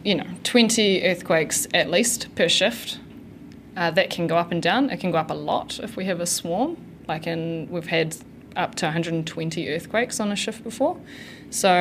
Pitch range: 165-185 Hz